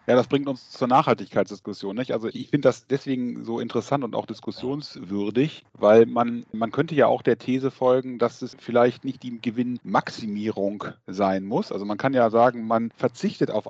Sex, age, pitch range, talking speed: male, 10-29, 120-150 Hz, 180 wpm